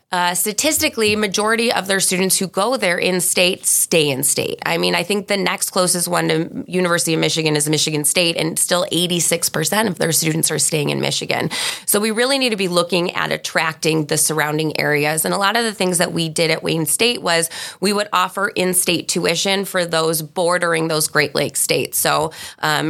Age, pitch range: 20-39, 160-200 Hz